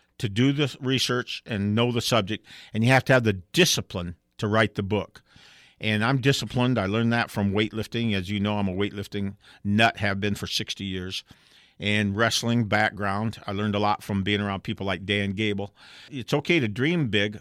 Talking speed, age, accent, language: 200 wpm, 50-69, American, English